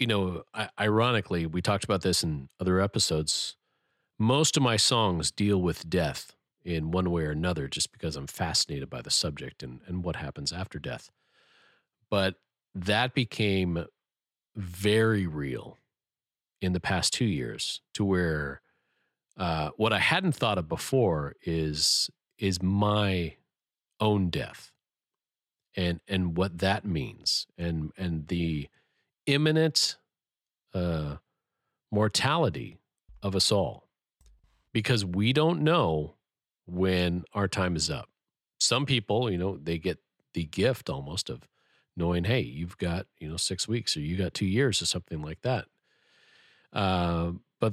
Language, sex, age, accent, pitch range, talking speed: English, male, 40-59, American, 85-110 Hz, 140 wpm